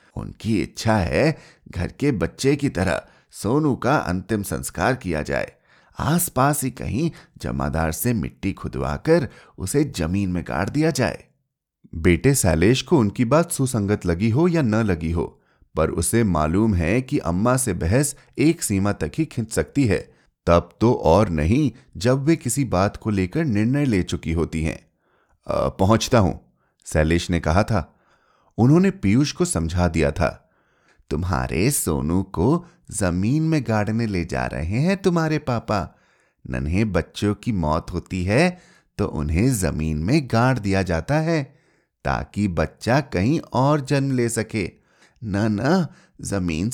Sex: male